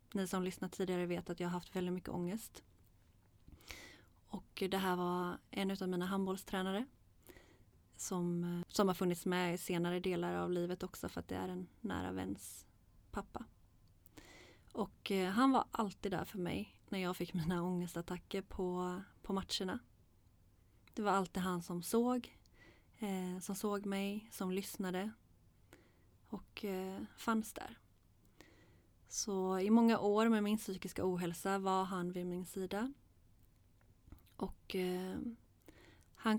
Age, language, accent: 30-49, Swedish, native